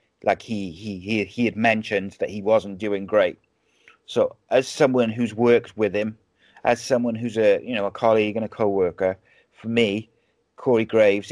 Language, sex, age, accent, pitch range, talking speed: English, male, 30-49, British, 100-120 Hz, 180 wpm